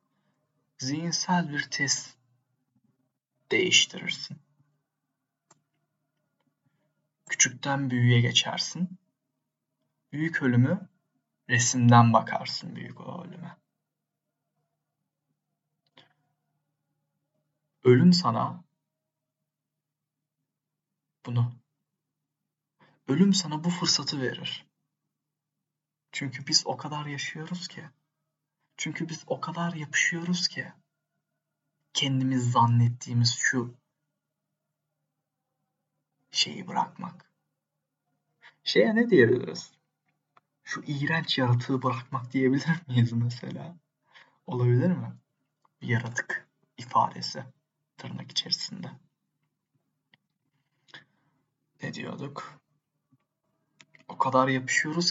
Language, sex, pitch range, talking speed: Turkish, male, 130-160 Hz, 65 wpm